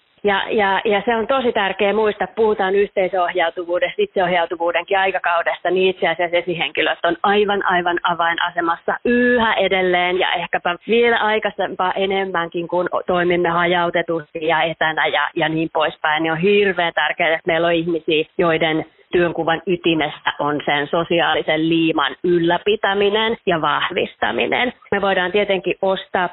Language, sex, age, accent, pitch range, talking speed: Finnish, female, 20-39, native, 165-200 Hz, 130 wpm